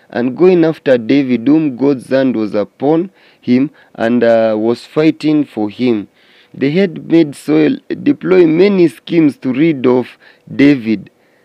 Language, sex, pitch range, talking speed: English, male, 125-175 Hz, 140 wpm